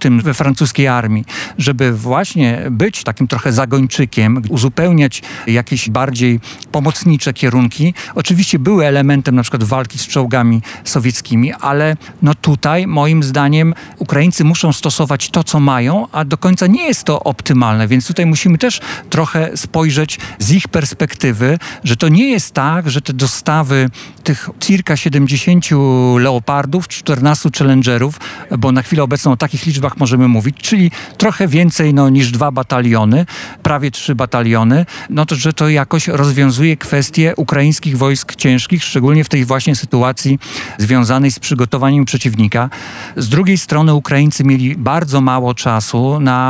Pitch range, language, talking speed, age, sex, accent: 130-155 Hz, Polish, 145 wpm, 50-69, male, native